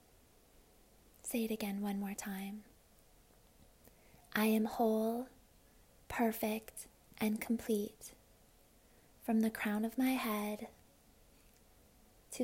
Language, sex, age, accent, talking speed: English, female, 20-39, American, 90 wpm